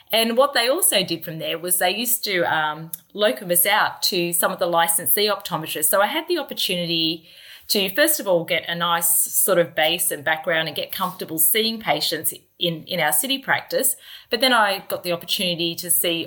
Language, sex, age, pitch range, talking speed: English, female, 30-49, 170-220 Hz, 205 wpm